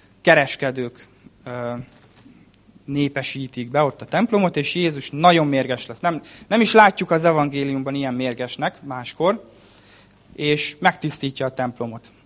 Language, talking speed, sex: Hungarian, 115 wpm, male